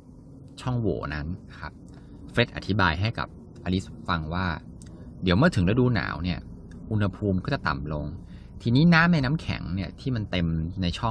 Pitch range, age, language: 85-110 Hz, 20-39, Thai